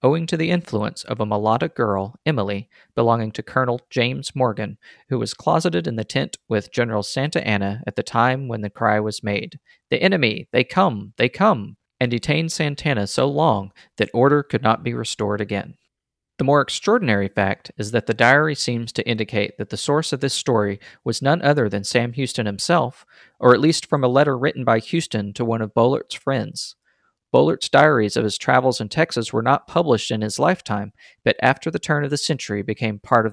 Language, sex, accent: English, male, American